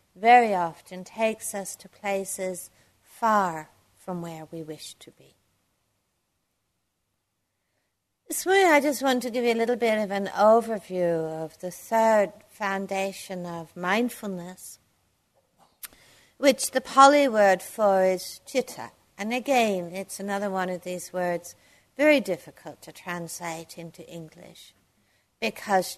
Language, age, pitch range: English, 60-79, 175-225 Hz